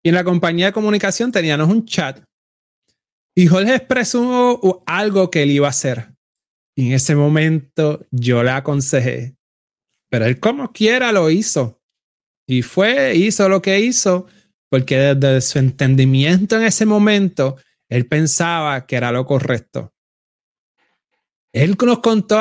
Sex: male